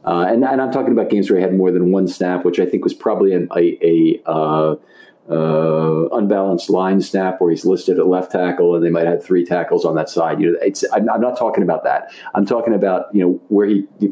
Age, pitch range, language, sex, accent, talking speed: 50-69, 90-115 Hz, English, male, American, 245 wpm